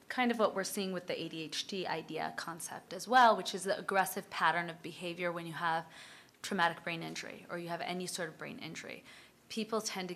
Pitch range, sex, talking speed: 175-200 Hz, female, 215 wpm